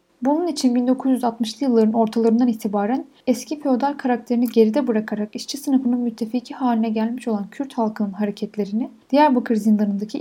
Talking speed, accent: 130 wpm, native